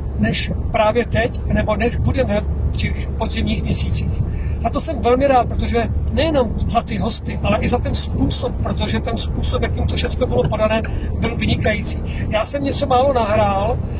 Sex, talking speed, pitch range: male, 170 wpm, 75-100 Hz